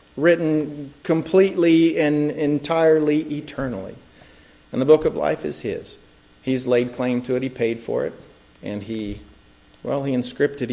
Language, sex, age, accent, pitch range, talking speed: English, male, 40-59, American, 120-160 Hz, 145 wpm